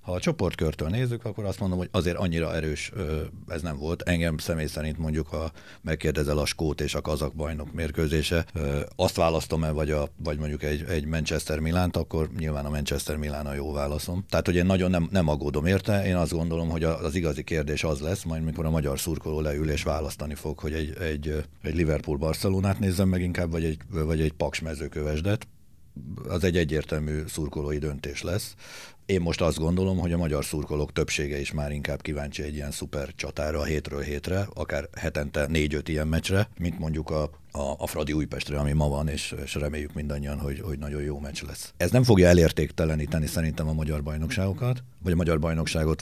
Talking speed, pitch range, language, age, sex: 190 wpm, 75-90 Hz, Hungarian, 60-79, male